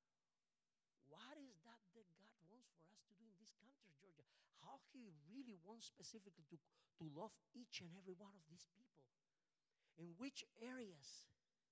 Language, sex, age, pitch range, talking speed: English, male, 50-69, 145-220 Hz, 165 wpm